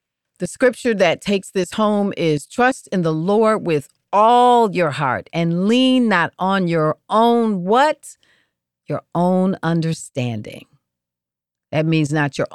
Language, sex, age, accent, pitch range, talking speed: English, female, 40-59, American, 140-190 Hz, 140 wpm